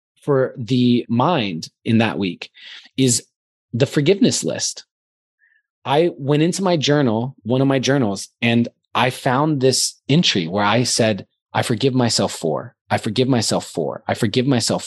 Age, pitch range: 20-39, 115-150 Hz